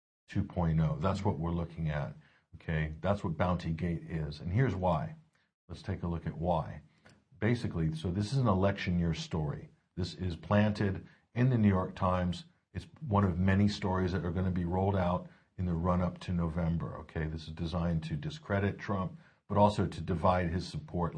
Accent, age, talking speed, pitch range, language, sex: American, 50-69, 185 wpm, 85-100 Hz, English, male